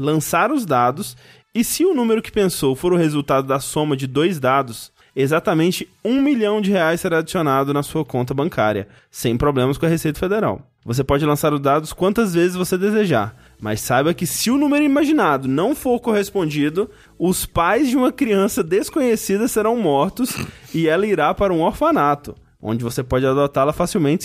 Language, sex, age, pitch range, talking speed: Portuguese, male, 20-39, 135-190 Hz, 180 wpm